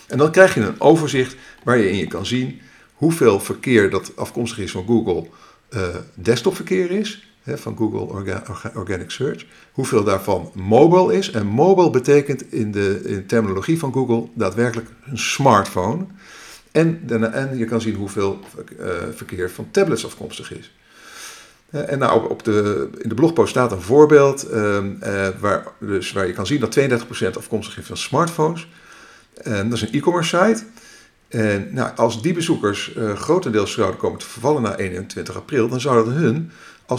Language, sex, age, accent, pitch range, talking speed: Dutch, male, 50-69, Dutch, 105-150 Hz, 165 wpm